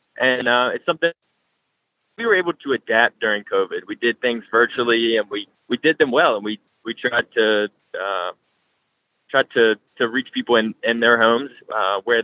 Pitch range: 110-130 Hz